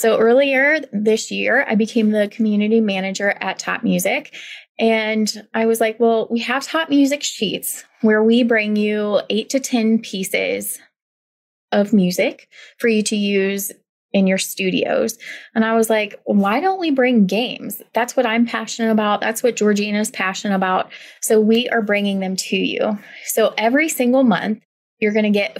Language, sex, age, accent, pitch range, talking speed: English, female, 20-39, American, 200-230 Hz, 170 wpm